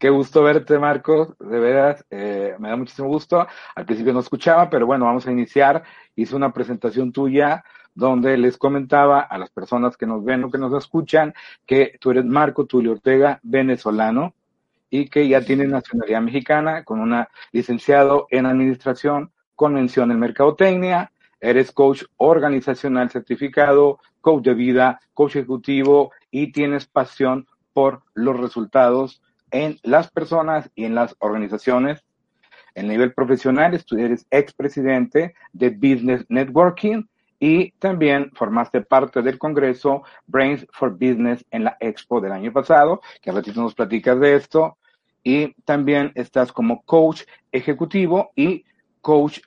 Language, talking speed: Spanish, 145 wpm